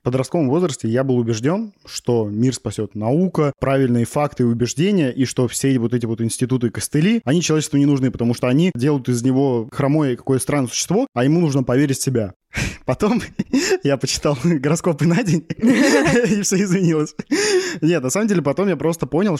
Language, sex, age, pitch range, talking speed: Russian, male, 20-39, 130-170 Hz, 180 wpm